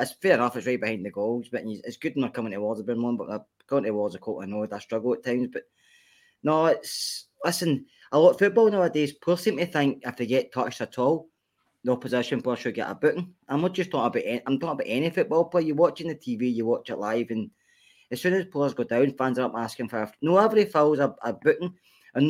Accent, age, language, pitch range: British, 20-39, English, 120-165 Hz